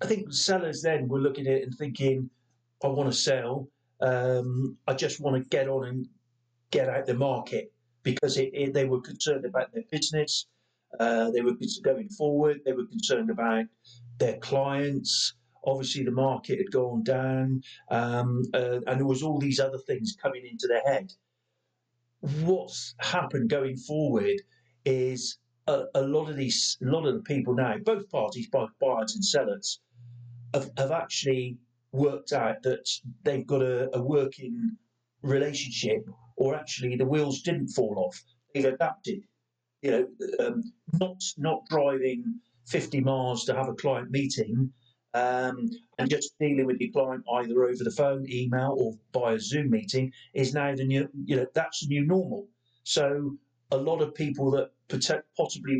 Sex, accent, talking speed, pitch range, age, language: male, British, 165 wpm, 125-150 Hz, 50-69, English